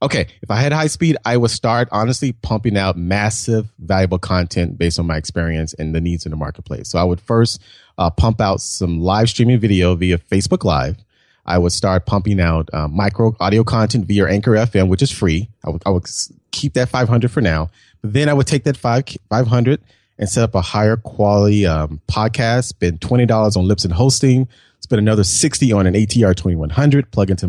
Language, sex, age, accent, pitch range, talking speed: English, male, 30-49, American, 90-120 Hz, 205 wpm